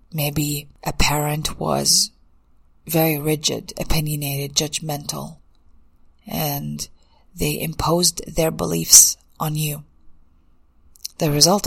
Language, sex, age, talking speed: English, female, 30-49, 85 wpm